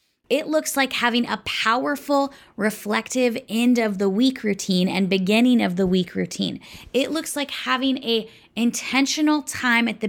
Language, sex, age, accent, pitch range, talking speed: English, female, 20-39, American, 185-240 Hz, 160 wpm